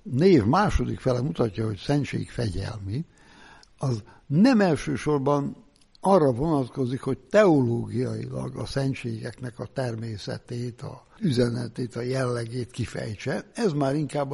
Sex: male